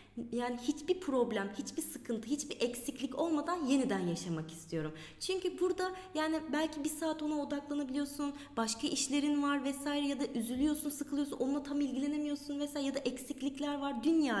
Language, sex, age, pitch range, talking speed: Turkish, female, 20-39, 210-295 Hz, 150 wpm